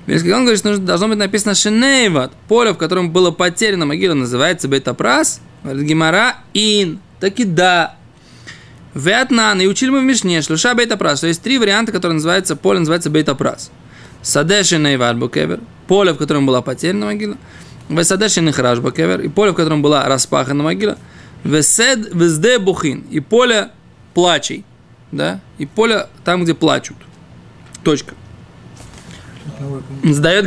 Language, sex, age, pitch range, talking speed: Russian, male, 20-39, 145-200 Hz, 130 wpm